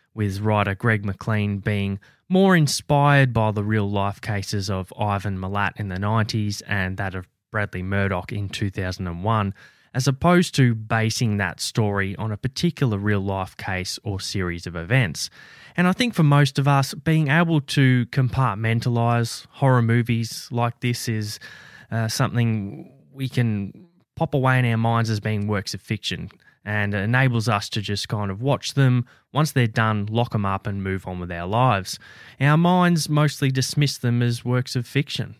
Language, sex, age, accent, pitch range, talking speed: English, male, 20-39, Australian, 100-135 Hz, 170 wpm